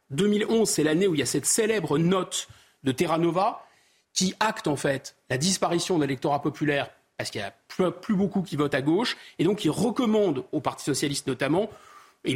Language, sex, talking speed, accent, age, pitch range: French, male, 200 wpm, French, 40-59, 150-210 Hz